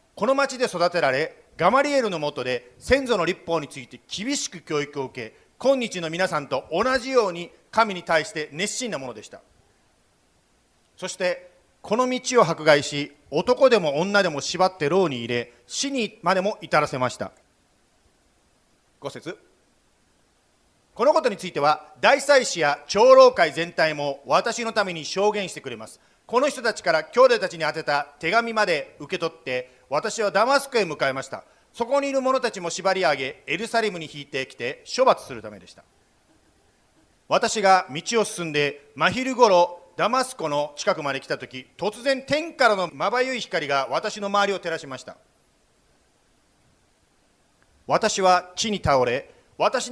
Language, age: Japanese, 40-59